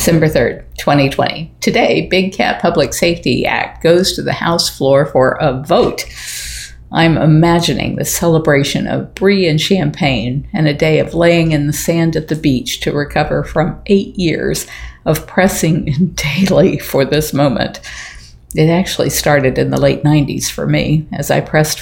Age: 50-69